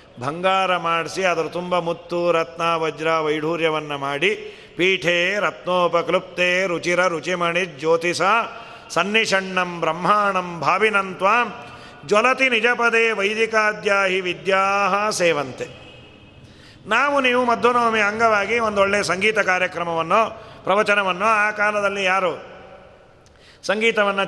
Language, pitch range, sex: Kannada, 170-215 Hz, male